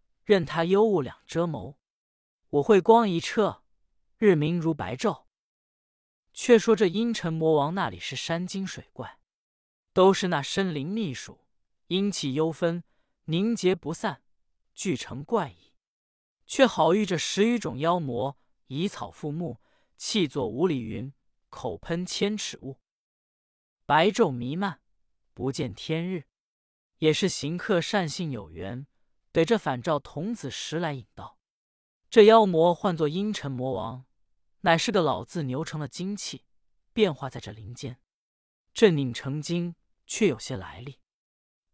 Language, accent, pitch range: Chinese, native, 140-195 Hz